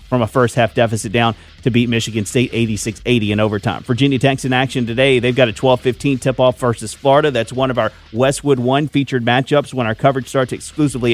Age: 30-49